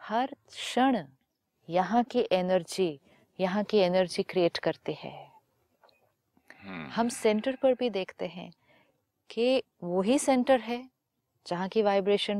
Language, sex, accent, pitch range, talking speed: Hindi, female, native, 175-235 Hz, 115 wpm